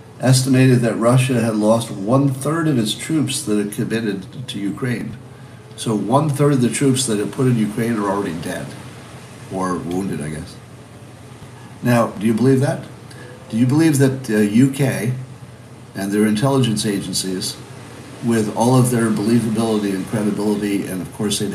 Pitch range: 115-135 Hz